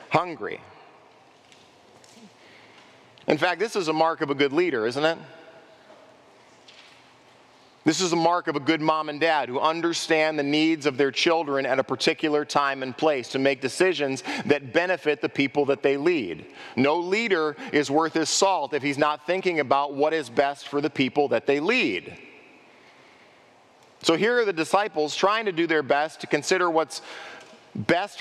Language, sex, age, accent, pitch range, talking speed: English, male, 40-59, American, 145-175 Hz, 170 wpm